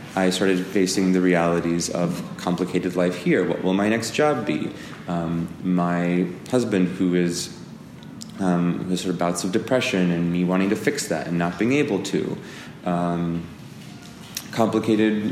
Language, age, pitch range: English, 30-49, 85-100 Hz